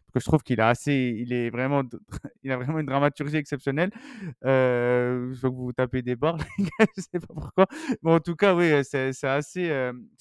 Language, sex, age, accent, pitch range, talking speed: French, male, 20-39, French, 125-160 Hz, 205 wpm